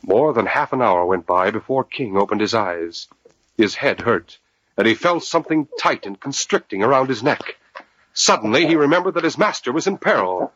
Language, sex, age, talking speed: English, male, 50-69, 195 wpm